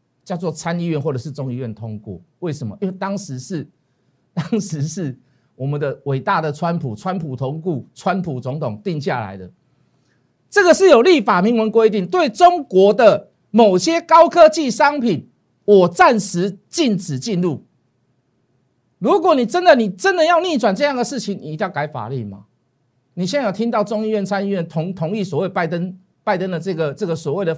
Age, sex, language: 50-69, male, Chinese